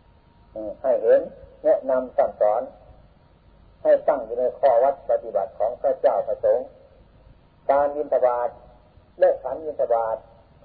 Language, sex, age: Thai, male, 50-69